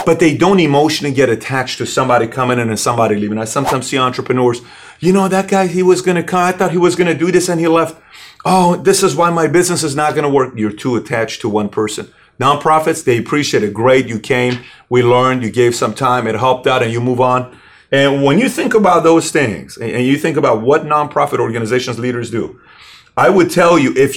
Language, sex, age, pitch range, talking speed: English, male, 40-59, 125-165 Hz, 235 wpm